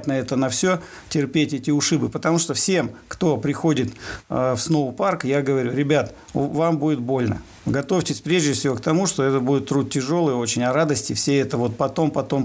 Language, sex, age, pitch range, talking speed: Russian, male, 50-69, 125-160 Hz, 195 wpm